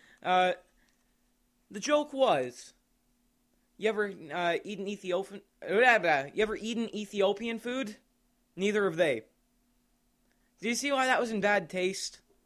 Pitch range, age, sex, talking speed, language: 150-235 Hz, 20-39, male, 125 wpm, English